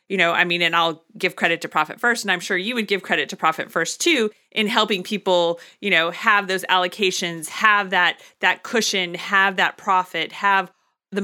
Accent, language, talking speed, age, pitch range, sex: American, English, 210 wpm, 30-49, 170-205 Hz, female